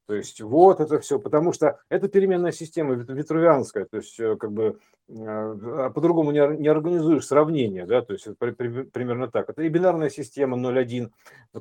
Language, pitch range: Russian, 110-160 Hz